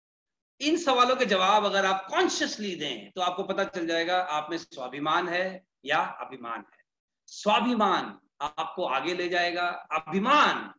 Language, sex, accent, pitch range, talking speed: Hindi, male, native, 170-215 Hz, 145 wpm